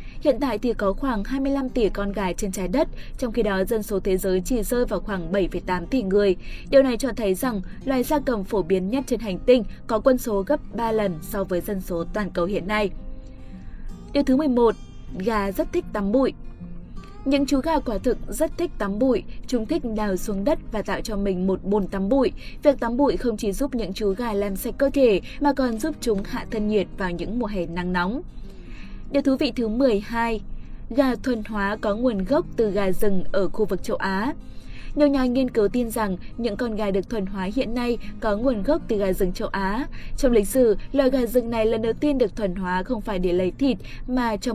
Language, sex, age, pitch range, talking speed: Vietnamese, female, 20-39, 195-255 Hz, 230 wpm